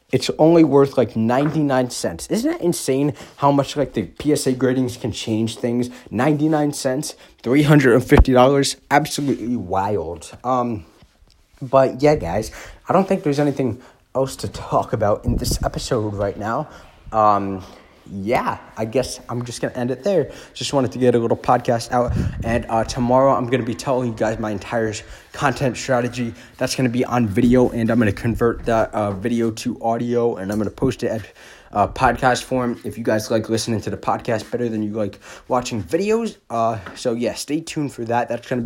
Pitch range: 110-130 Hz